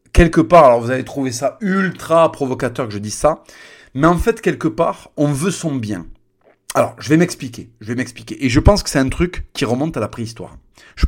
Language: French